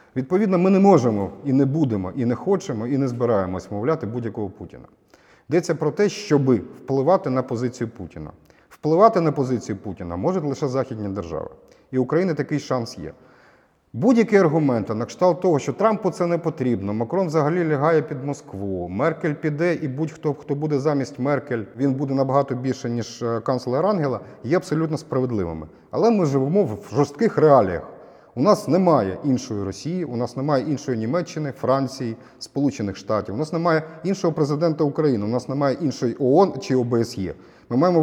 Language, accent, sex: Ukrainian, native, male